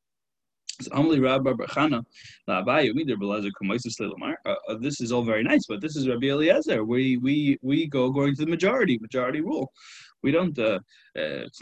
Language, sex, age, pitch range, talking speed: English, male, 20-39, 125-150 Hz, 135 wpm